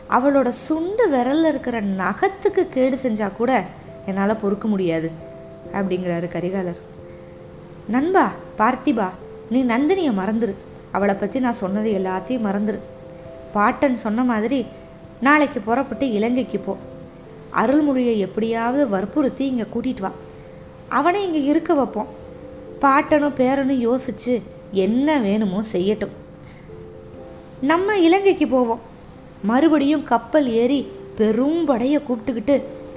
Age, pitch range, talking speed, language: 20-39, 215-290 Hz, 100 wpm, Tamil